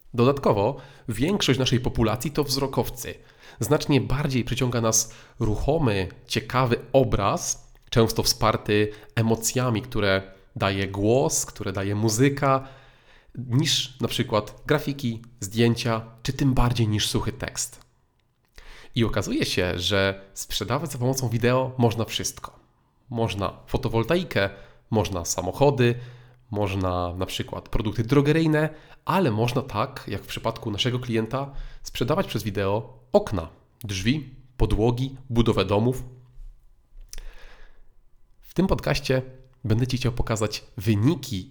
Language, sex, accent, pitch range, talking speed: Polish, male, native, 105-130 Hz, 110 wpm